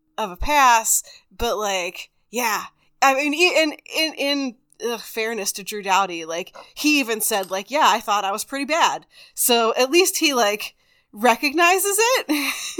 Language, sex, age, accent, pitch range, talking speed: English, female, 20-39, American, 210-295 Hz, 165 wpm